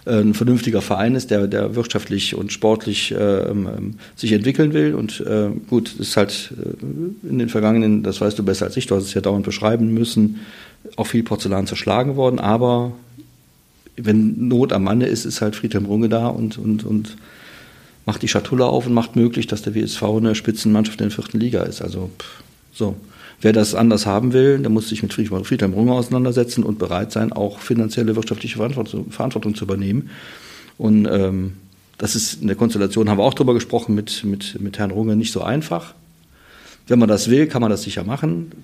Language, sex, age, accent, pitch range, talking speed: German, male, 40-59, German, 100-120 Hz, 190 wpm